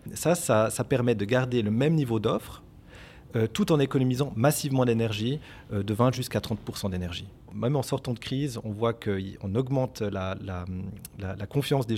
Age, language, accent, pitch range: 30-49, French, French, 105-135 Hz